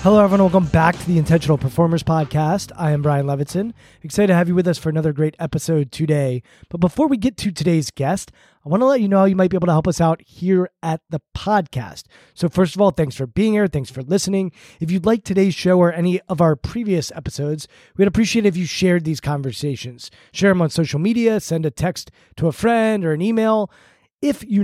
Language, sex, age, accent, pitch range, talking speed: English, male, 20-39, American, 155-195 Hz, 235 wpm